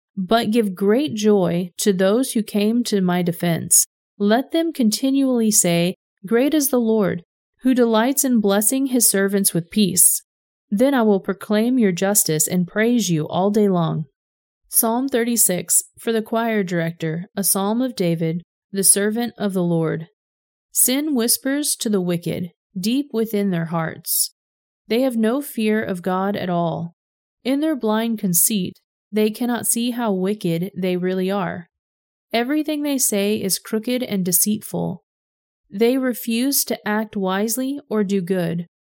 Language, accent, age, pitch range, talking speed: English, American, 30-49, 180-230 Hz, 150 wpm